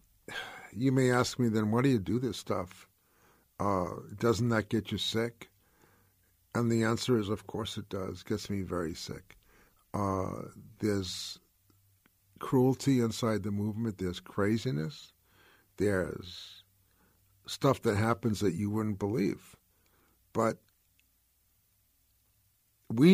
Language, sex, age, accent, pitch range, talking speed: English, male, 60-79, American, 95-115 Hz, 120 wpm